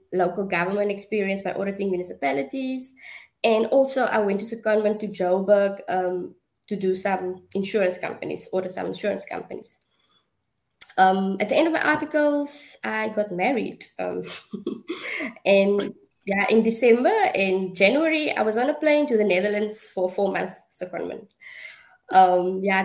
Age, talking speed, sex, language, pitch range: 20-39, 145 wpm, female, English, 185-225 Hz